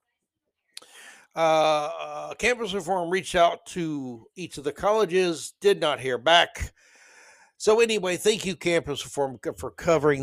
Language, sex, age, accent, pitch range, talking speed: English, male, 60-79, American, 130-190 Hz, 130 wpm